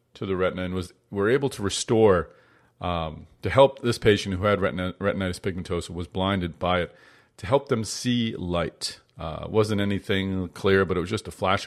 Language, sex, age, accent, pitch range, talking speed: English, male, 40-59, American, 90-110 Hz, 200 wpm